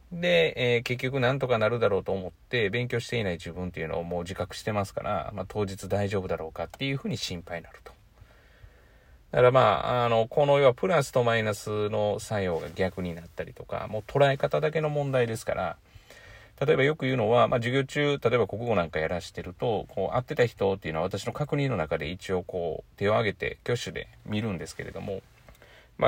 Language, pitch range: Japanese, 95-135 Hz